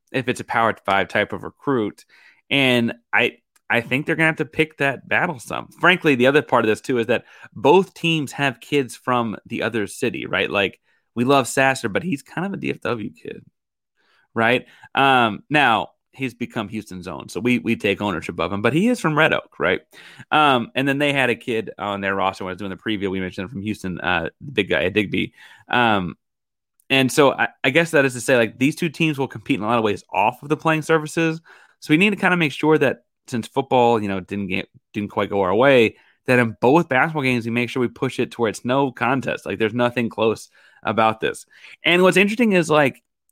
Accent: American